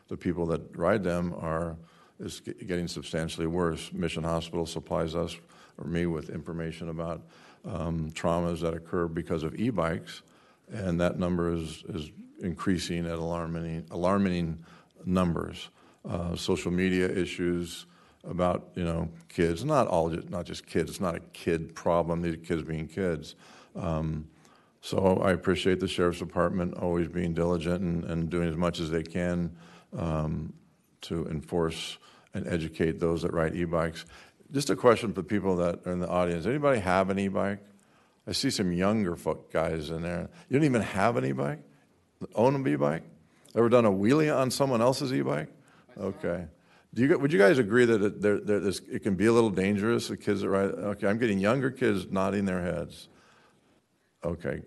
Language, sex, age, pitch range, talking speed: English, male, 50-69, 85-95 Hz, 165 wpm